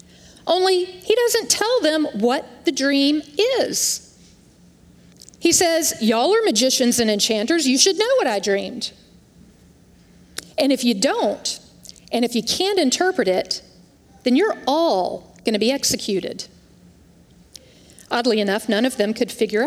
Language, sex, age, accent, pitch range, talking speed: English, female, 40-59, American, 225-325 Hz, 140 wpm